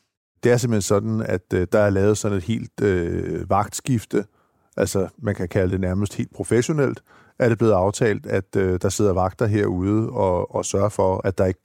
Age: 50-69